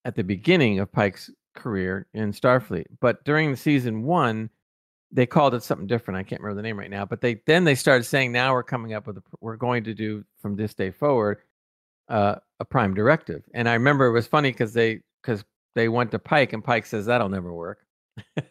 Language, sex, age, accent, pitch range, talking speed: English, male, 50-69, American, 100-130 Hz, 215 wpm